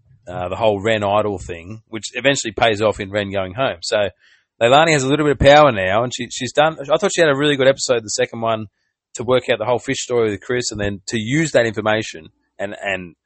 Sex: male